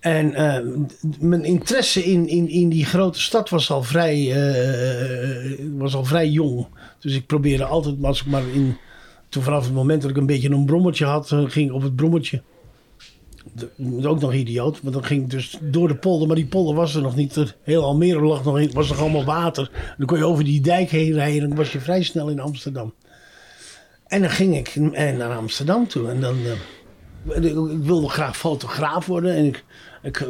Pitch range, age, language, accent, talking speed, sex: 135-165 Hz, 50-69, Dutch, Dutch, 210 wpm, male